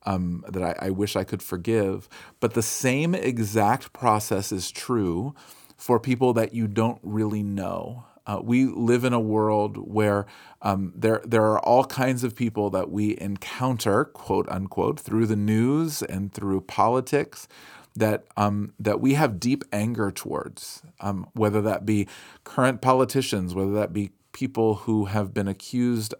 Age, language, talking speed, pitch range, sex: 40-59, English, 160 wpm, 100-125 Hz, male